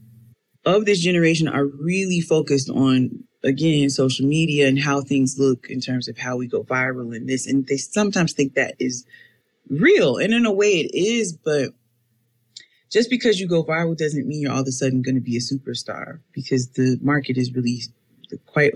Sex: female